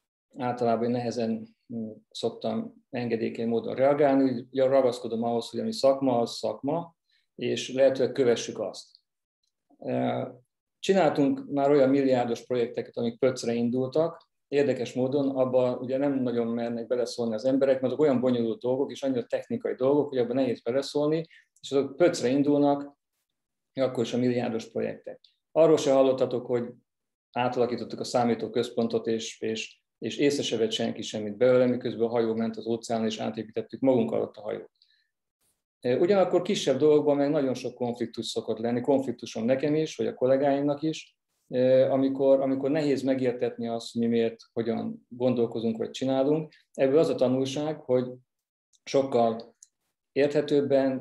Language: Hungarian